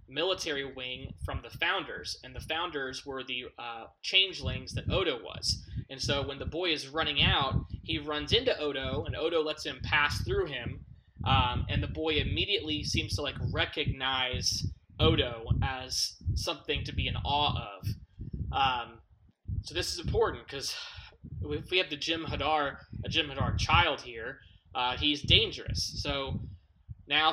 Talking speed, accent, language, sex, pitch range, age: 160 wpm, American, English, male, 110-150 Hz, 20-39